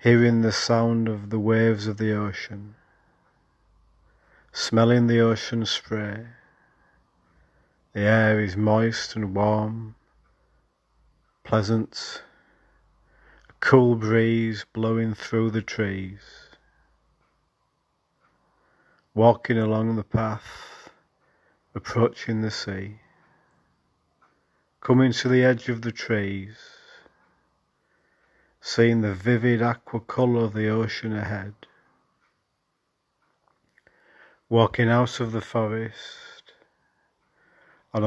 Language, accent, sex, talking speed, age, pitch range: English, British, male, 90 wpm, 40-59, 105-115 Hz